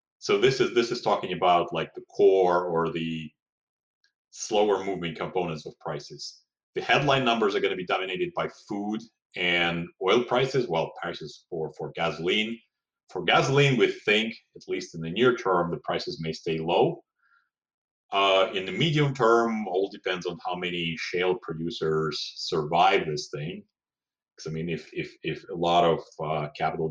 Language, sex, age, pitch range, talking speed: English, male, 30-49, 80-120 Hz, 165 wpm